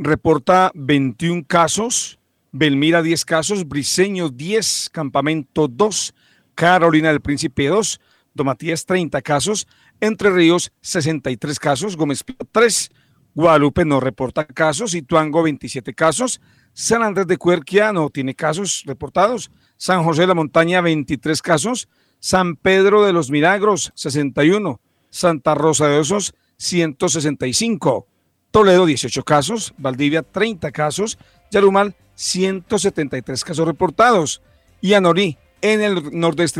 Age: 50-69